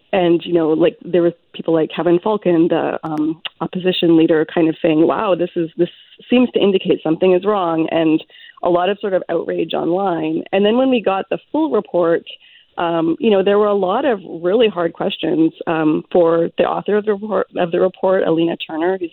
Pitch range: 165-205 Hz